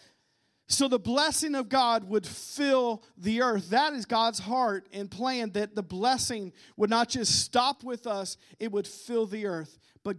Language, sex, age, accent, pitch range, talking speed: English, male, 40-59, American, 215-280 Hz, 175 wpm